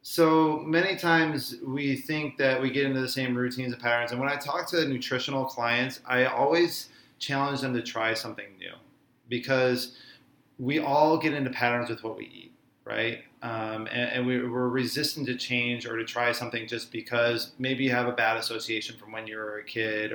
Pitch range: 120-150 Hz